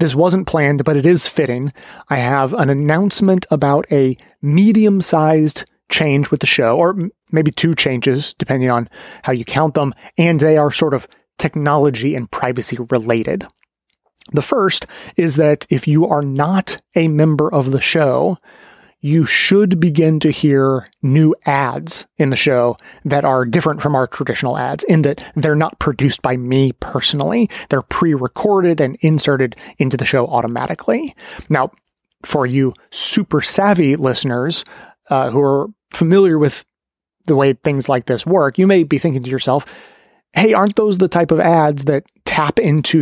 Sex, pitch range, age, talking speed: male, 135-165 Hz, 30-49, 160 wpm